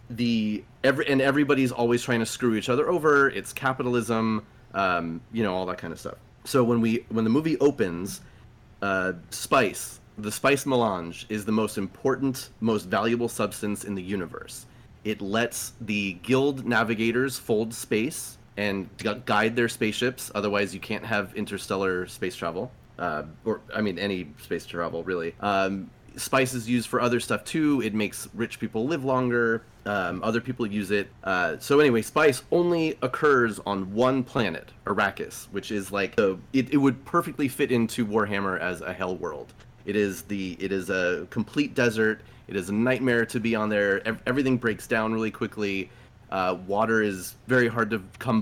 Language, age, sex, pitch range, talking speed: English, 30-49, male, 105-125 Hz, 170 wpm